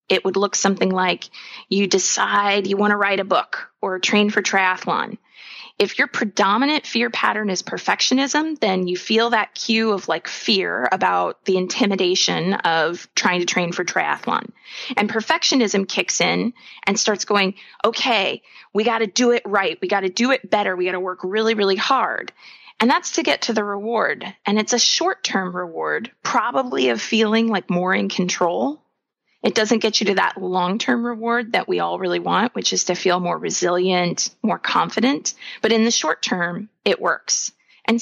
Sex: female